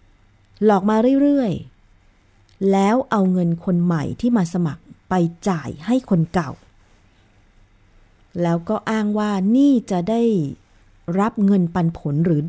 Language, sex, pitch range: Thai, female, 145-195 Hz